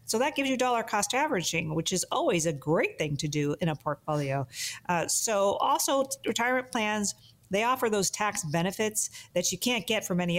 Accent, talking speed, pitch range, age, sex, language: American, 195 wpm, 160-210 Hz, 40-59, female, English